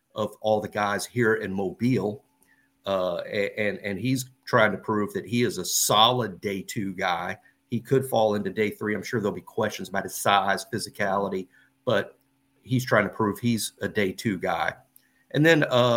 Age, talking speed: 50-69, 190 wpm